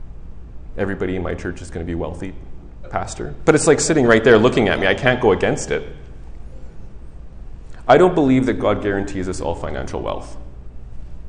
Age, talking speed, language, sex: 30-49, 185 wpm, English, male